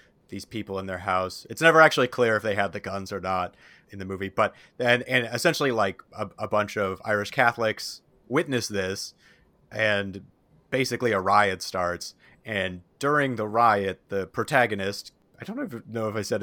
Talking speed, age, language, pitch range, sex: 180 wpm, 30-49, English, 95-120 Hz, male